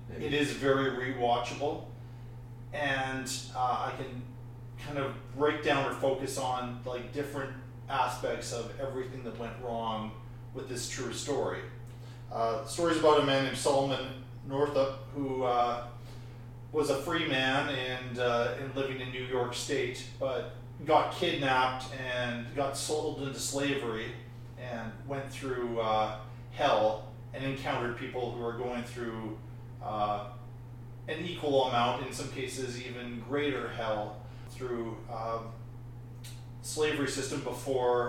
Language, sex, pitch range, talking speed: English, male, 120-135 Hz, 135 wpm